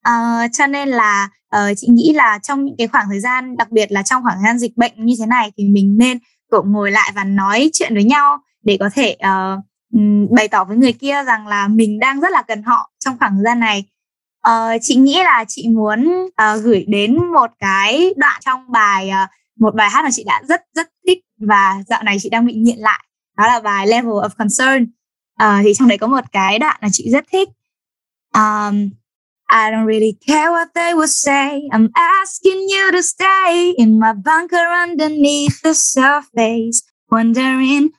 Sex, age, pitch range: female, 10-29, 220-295 Hz